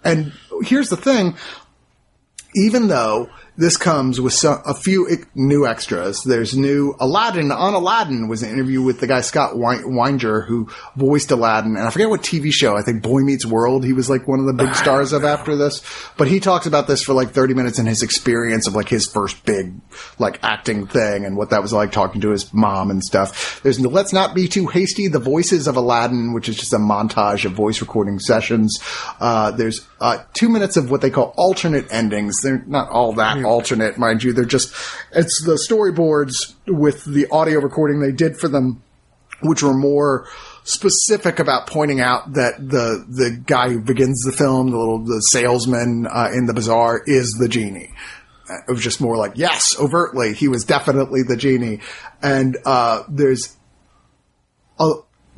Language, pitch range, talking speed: English, 120-160 Hz, 195 wpm